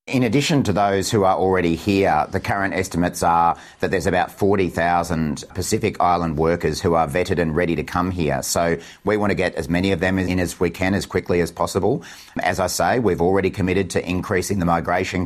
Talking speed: 210 wpm